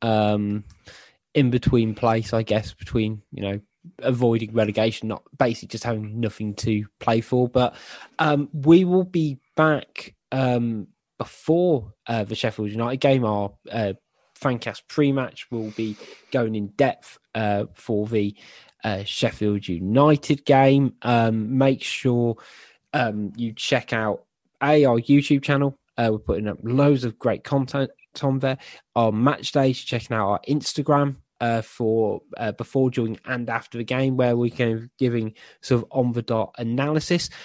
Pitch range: 110-140 Hz